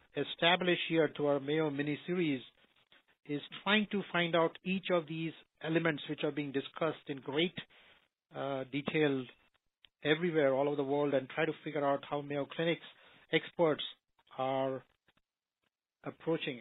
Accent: Indian